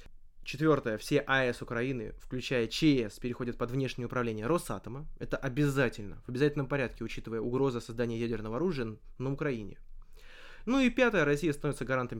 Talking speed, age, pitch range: 145 wpm, 20-39, 120-150 Hz